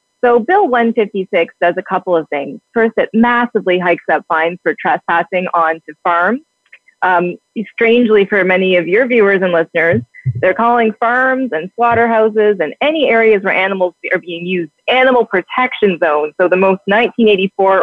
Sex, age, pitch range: female, 30-49, 180-235 Hz